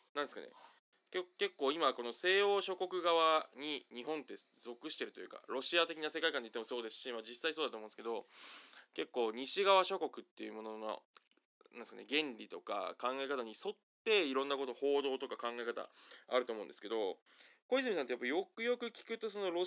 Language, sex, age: Japanese, male, 20-39